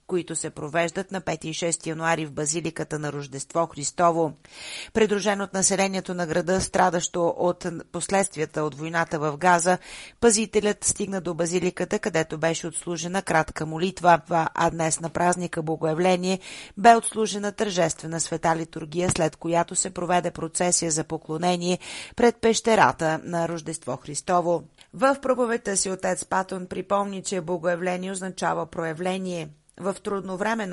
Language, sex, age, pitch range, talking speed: Bulgarian, female, 40-59, 165-195 Hz, 135 wpm